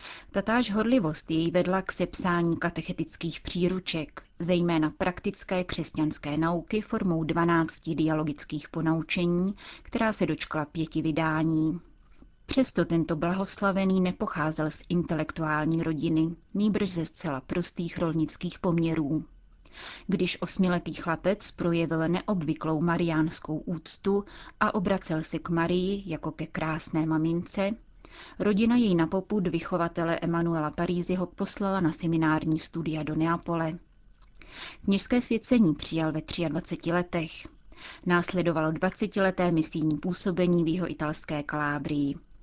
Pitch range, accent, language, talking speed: 160-185 Hz, native, Czech, 110 wpm